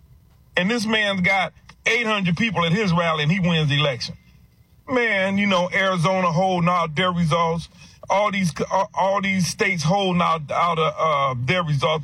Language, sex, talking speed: English, male, 175 wpm